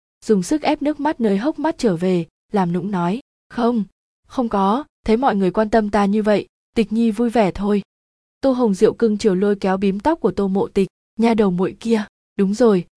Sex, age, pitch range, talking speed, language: female, 20-39, 190-230 Hz, 220 wpm, Vietnamese